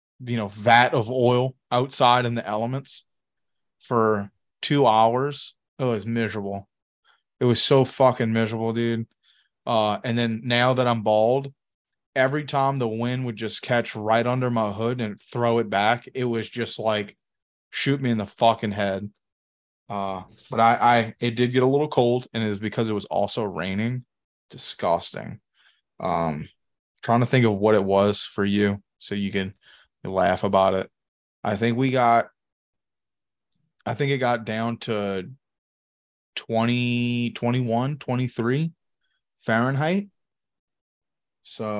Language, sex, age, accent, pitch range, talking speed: English, male, 20-39, American, 105-125 Hz, 150 wpm